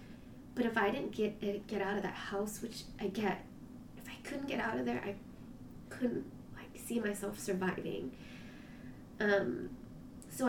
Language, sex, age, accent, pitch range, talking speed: English, female, 20-39, American, 195-225 Hz, 160 wpm